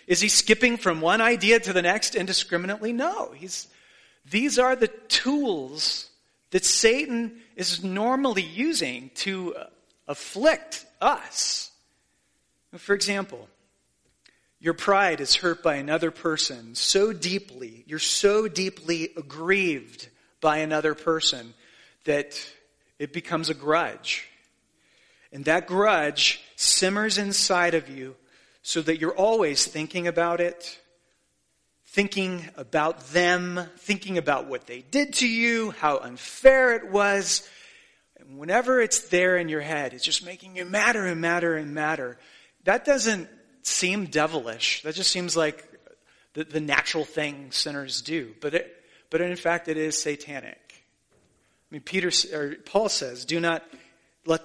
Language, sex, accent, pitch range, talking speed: English, male, American, 155-200 Hz, 135 wpm